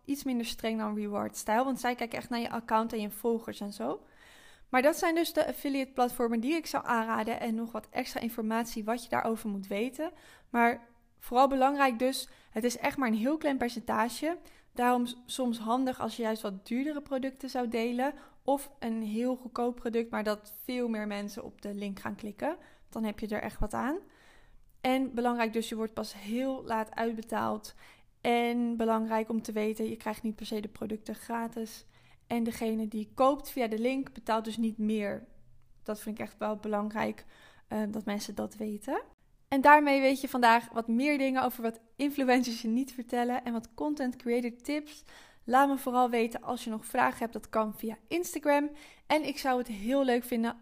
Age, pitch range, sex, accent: 20-39, 220-265 Hz, female, Dutch